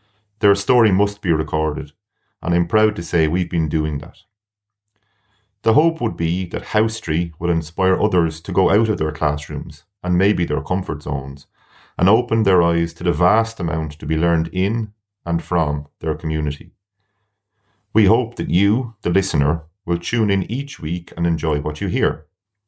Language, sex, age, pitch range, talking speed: English, male, 30-49, 80-105 Hz, 175 wpm